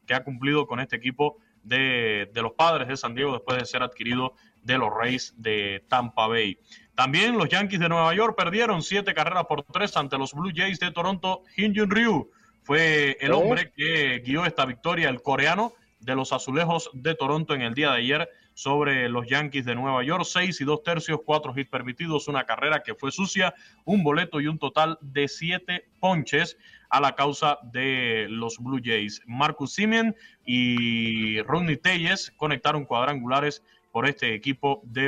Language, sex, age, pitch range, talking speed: Spanish, male, 20-39, 130-175 Hz, 180 wpm